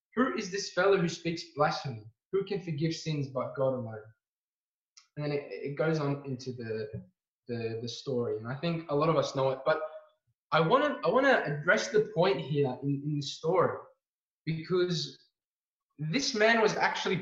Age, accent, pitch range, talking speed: 20-39, Australian, 140-180 Hz, 180 wpm